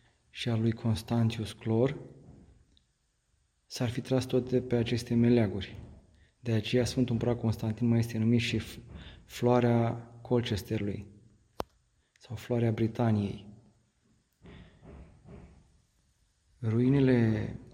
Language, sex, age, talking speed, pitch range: Romanian, male, 30-49, 95 wpm, 105-120 Hz